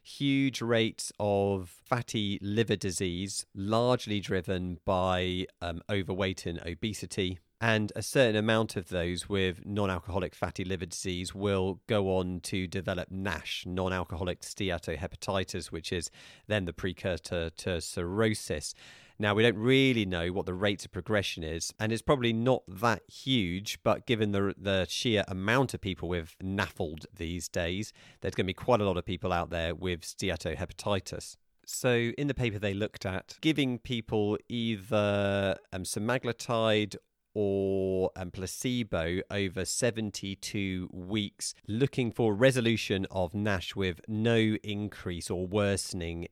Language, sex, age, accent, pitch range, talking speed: English, male, 40-59, British, 95-110 Hz, 145 wpm